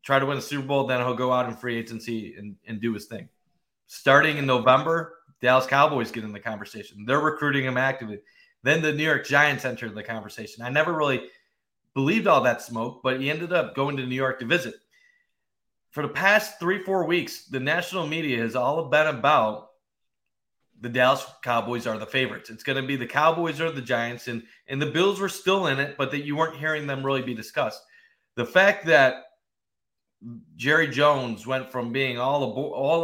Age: 30-49